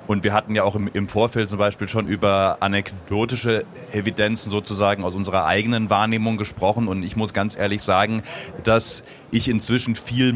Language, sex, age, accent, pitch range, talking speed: German, male, 30-49, German, 100-115 Hz, 170 wpm